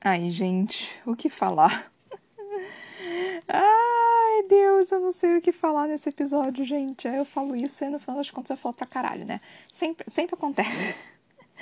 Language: Portuguese